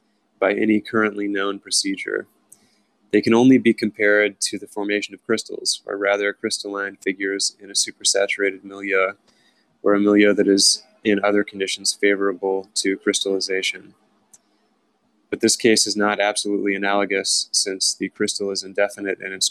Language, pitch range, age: English, 95-105 Hz, 20-39